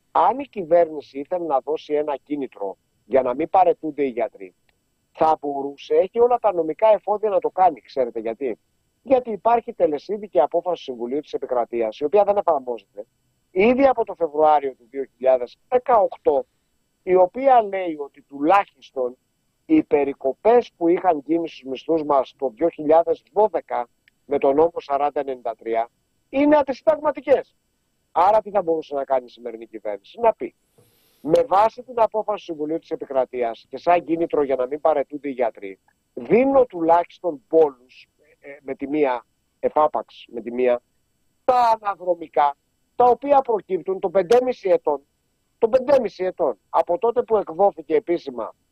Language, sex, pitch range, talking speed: Greek, male, 140-230 Hz, 145 wpm